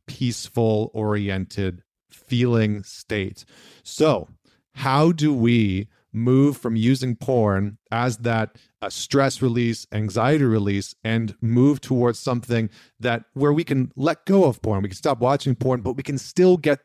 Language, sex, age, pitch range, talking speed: English, male, 40-59, 105-130 Hz, 140 wpm